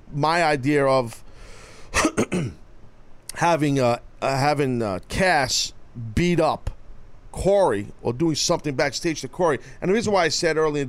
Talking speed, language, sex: 140 wpm, English, male